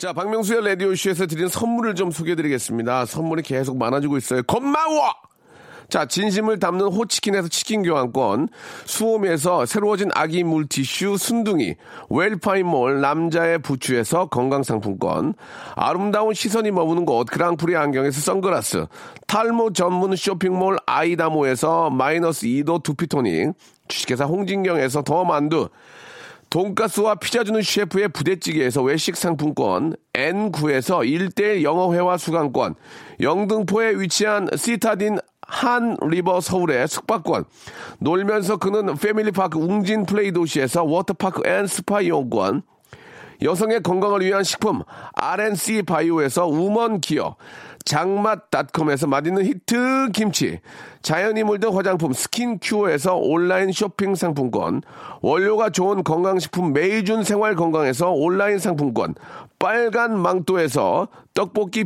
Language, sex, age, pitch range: Korean, male, 40-59, 165-210 Hz